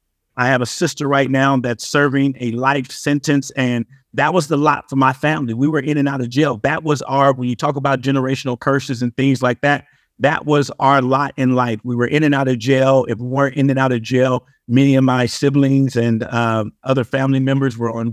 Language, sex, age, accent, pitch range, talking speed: English, male, 50-69, American, 130-145 Hz, 235 wpm